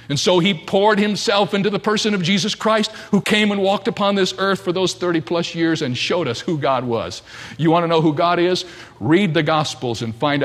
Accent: American